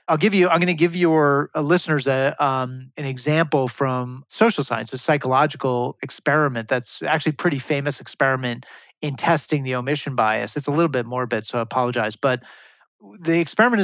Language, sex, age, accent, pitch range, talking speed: English, male, 30-49, American, 130-160 Hz, 180 wpm